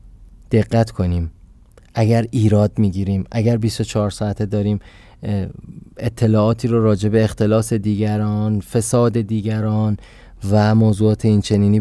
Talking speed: 100 wpm